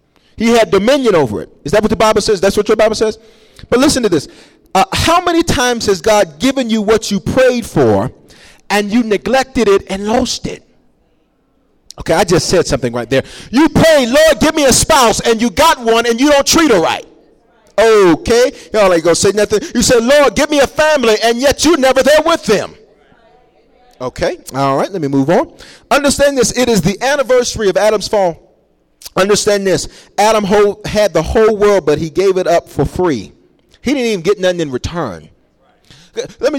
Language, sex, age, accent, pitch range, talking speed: English, male, 40-59, American, 180-245 Hz, 200 wpm